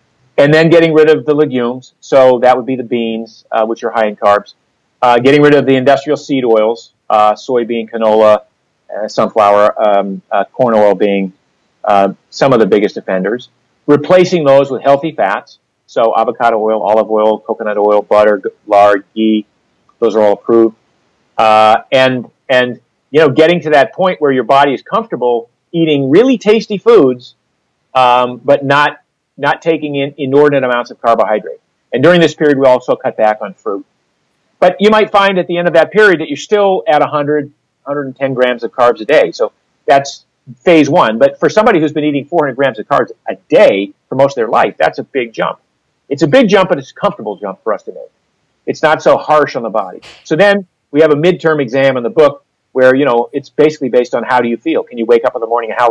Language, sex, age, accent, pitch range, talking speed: English, male, 40-59, American, 115-155 Hz, 210 wpm